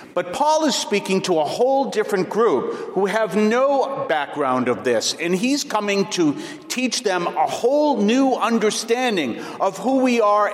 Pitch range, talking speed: 155-220 Hz, 165 wpm